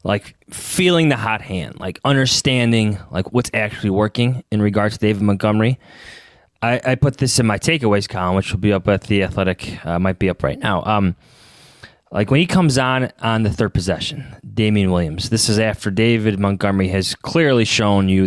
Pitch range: 100-140 Hz